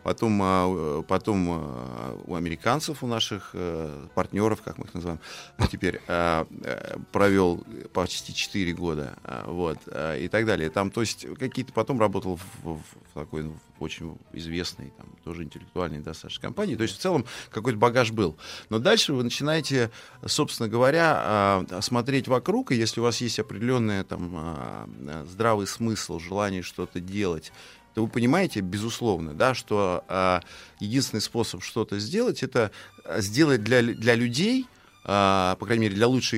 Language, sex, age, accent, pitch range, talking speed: Russian, male, 30-49, native, 85-120 Hz, 125 wpm